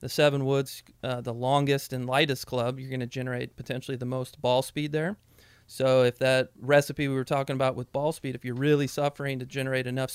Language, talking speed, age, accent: English, 205 wpm, 30-49, American